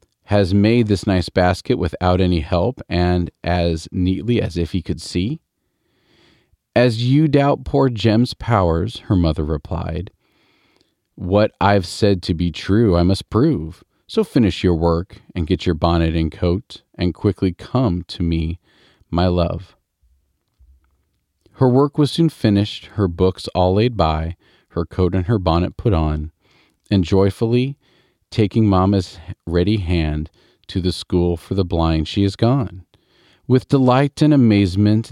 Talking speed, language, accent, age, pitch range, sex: 150 wpm, English, American, 40-59, 85-110 Hz, male